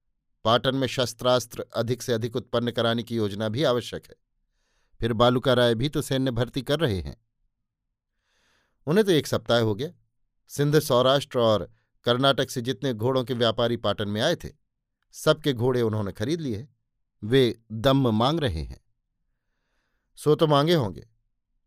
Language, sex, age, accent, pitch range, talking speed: Hindi, male, 50-69, native, 115-135 Hz, 155 wpm